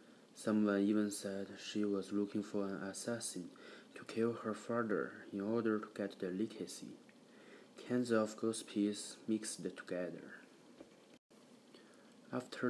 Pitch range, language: 100-110 Hz, English